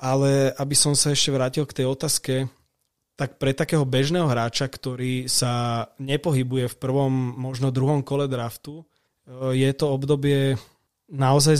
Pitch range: 120-135 Hz